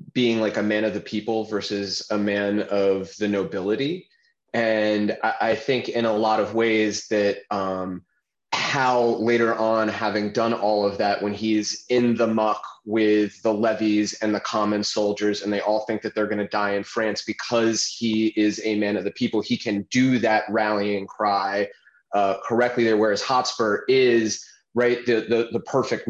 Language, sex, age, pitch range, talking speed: English, male, 20-39, 105-115 Hz, 180 wpm